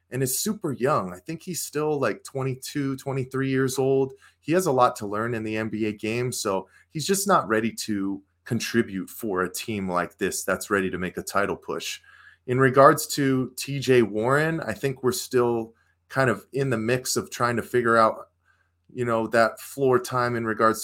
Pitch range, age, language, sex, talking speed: 100-130 Hz, 30-49, English, male, 195 wpm